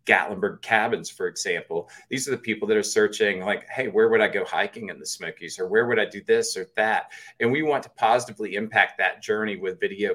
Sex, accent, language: male, American, English